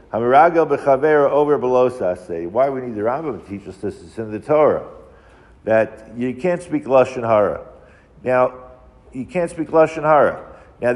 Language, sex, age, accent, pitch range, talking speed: English, male, 50-69, American, 110-140 Hz, 170 wpm